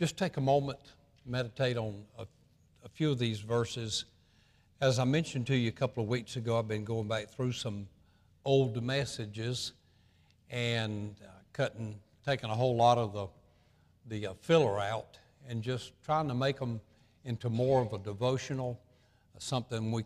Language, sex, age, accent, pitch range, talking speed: English, male, 60-79, American, 110-130 Hz, 170 wpm